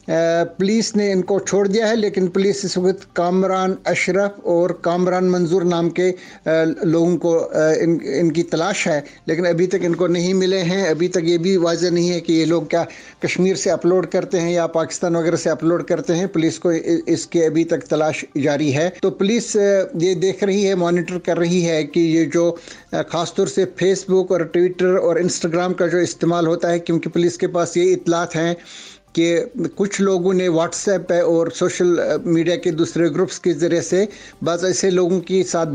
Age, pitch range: 60-79, 165-185 Hz